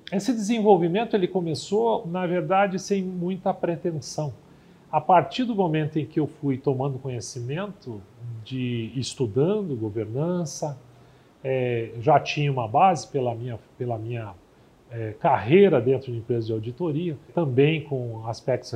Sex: male